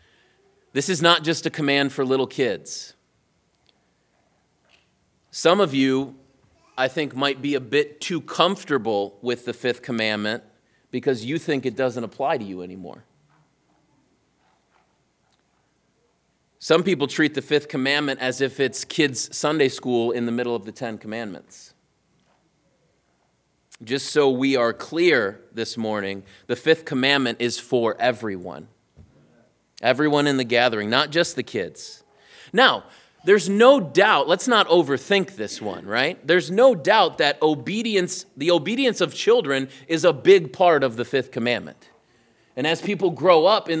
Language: English